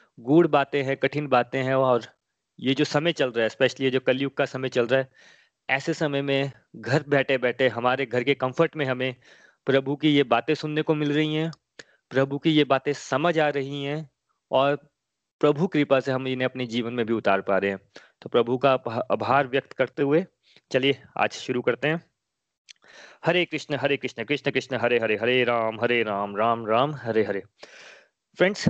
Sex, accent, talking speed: male, native, 195 wpm